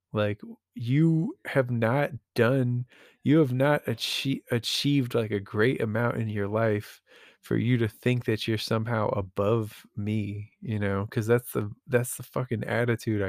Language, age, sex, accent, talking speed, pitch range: English, 20-39, male, American, 160 wpm, 105-125 Hz